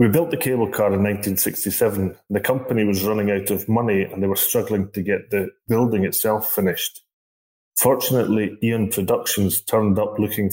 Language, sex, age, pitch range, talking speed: English, male, 30-49, 100-115 Hz, 175 wpm